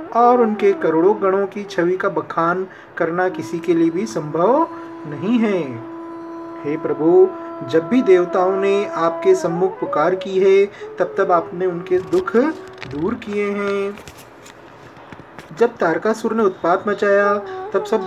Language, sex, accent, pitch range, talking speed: Hindi, male, native, 175-225 Hz, 140 wpm